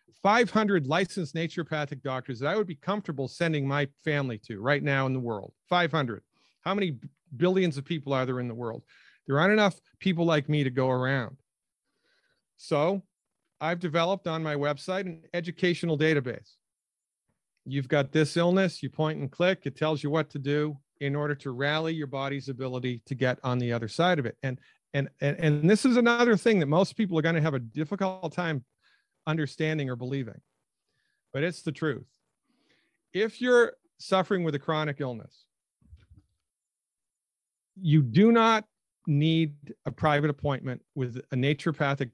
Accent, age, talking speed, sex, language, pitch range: American, 40-59, 165 wpm, male, English, 135-175 Hz